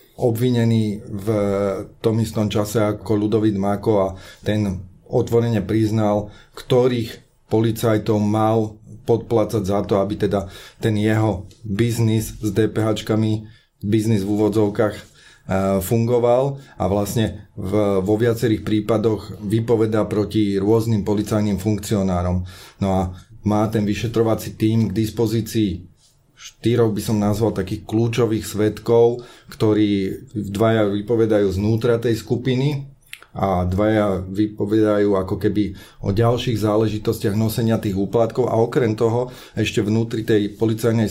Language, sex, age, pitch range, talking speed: Slovak, male, 30-49, 105-115 Hz, 115 wpm